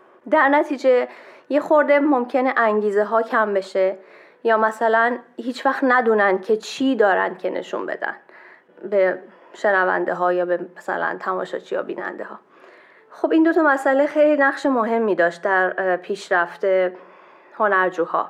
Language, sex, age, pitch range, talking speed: Persian, female, 20-39, 210-255 Hz, 140 wpm